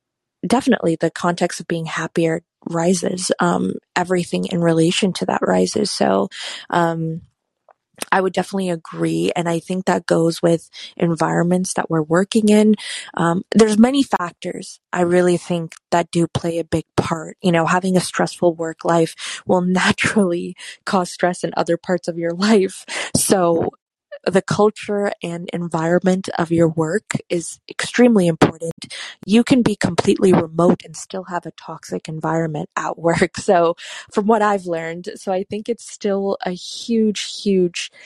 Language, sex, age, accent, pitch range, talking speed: English, female, 20-39, American, 170-200 Hz, 155 wpm